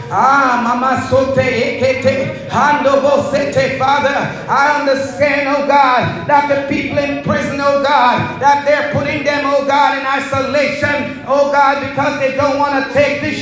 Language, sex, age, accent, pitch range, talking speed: English, male, 40-59, American, 270-310 Hz, 130 wpm